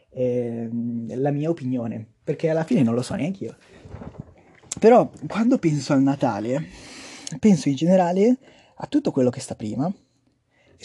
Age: 20-39